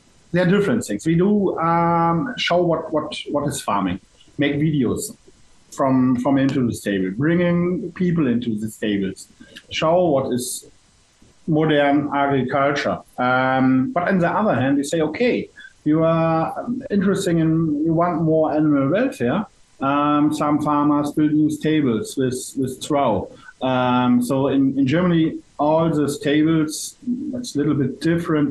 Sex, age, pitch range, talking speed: male, 50-69, 130-165 Hz, 145 wpm